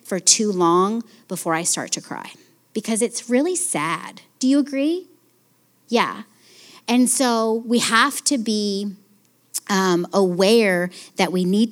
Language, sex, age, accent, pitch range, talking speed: English, female, 30-49, American, 180-240 Hz, 140 wpm